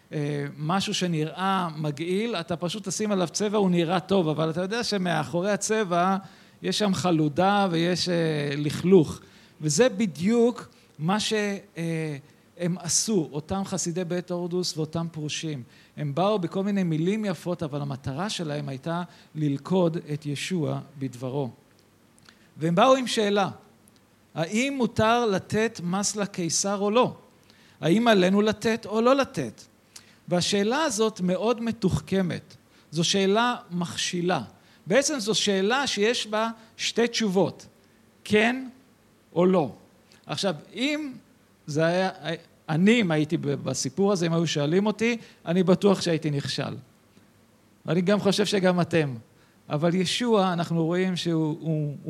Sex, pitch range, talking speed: male, 155-205 Hz, 125 wpm